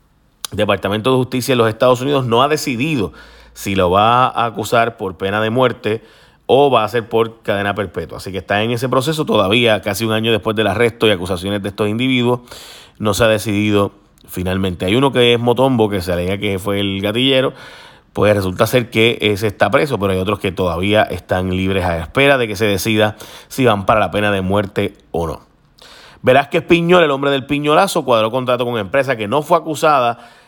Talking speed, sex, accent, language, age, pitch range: 205 wpm, male, Venezuelan, Spanish, 30-49, 100-130 Hz